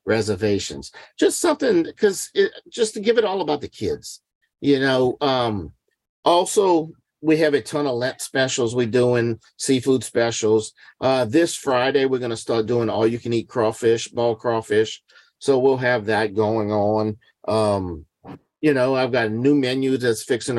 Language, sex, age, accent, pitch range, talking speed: English, male, 50-69, American, 110-135 Hz, 170 wpm